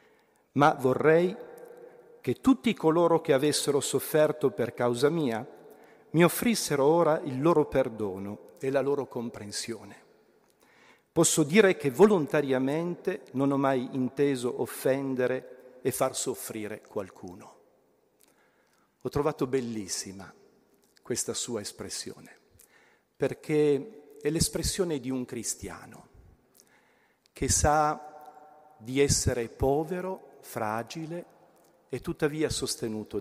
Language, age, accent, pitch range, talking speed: Italian, 50-69, native, 115-155 Hz, 100 wpm